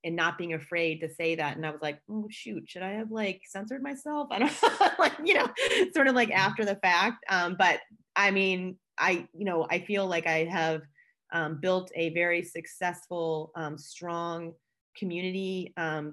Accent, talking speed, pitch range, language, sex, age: American, 195 wpm, 160-190 Hz, English, female, 30-49